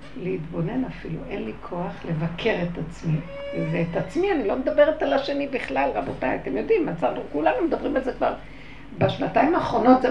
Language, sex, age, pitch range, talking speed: Hebrew, female, 60-79, 165-250 Hz, 170 wpm